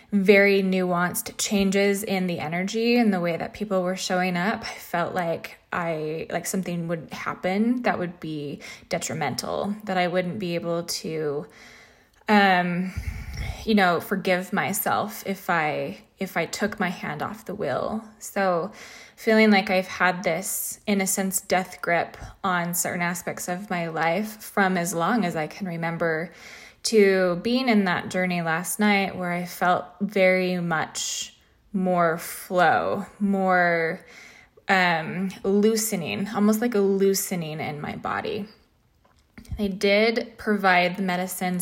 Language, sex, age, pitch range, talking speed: English, female, 20-39, 175-205 Hz, 145 wpm